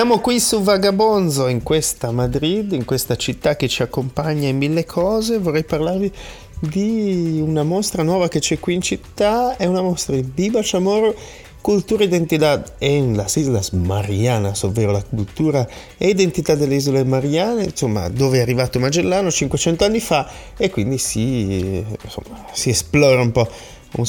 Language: Italian